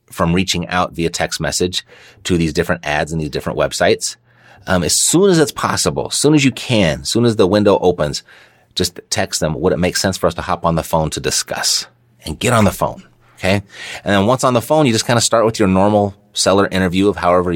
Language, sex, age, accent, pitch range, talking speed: English, male, 30-49, American, 85-115 Hz, 245 wpm